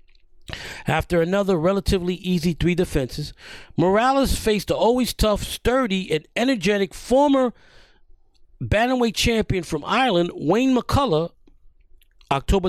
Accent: American